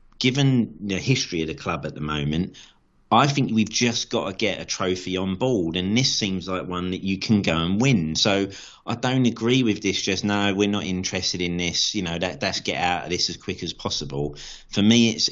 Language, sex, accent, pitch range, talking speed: English, male, British, 90-110 Hz, 230 wpm